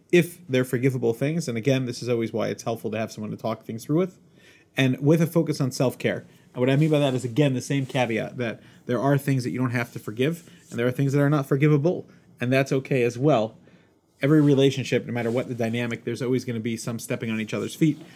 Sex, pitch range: male, 115-140 Hz